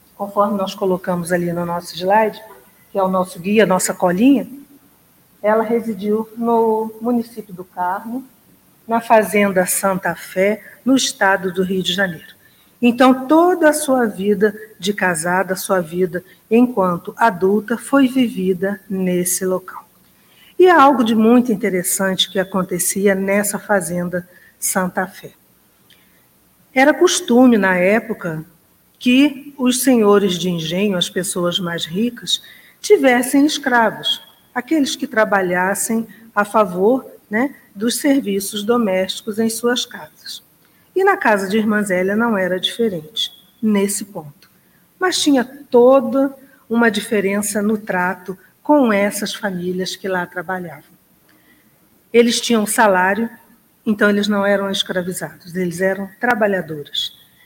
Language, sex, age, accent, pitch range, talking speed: Portuguese, female, 50-69, Brazilian, 185-235 Hz, 125 wpm